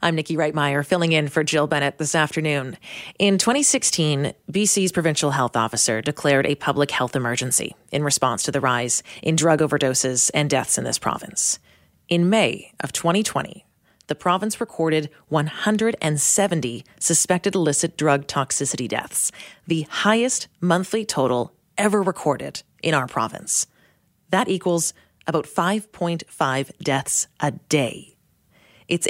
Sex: female